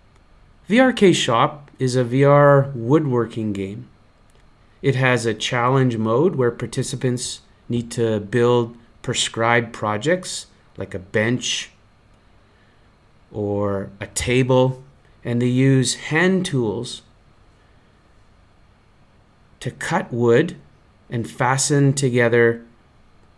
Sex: male